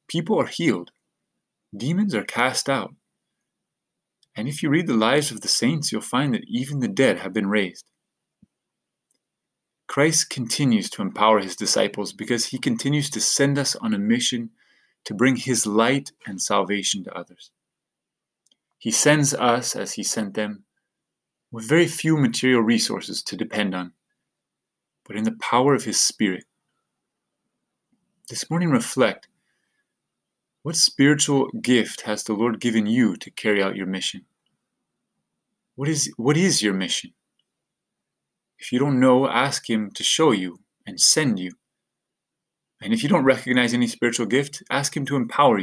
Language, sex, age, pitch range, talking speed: English, male, 30-49, 105-145 Hz, 150 wpm